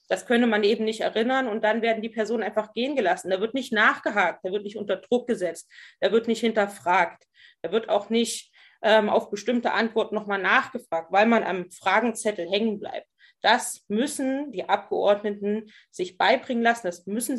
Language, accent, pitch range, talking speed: German, German, 200-235 Hz, 185 wpm